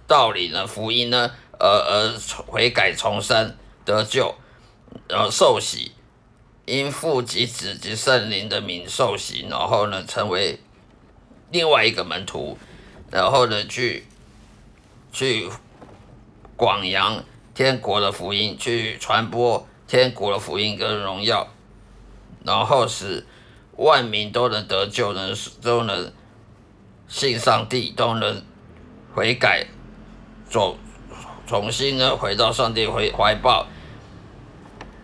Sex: male